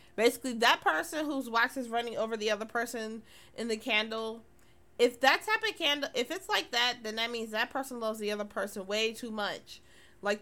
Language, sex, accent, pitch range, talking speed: English, female, American, 215-260 Hz, 205 wpm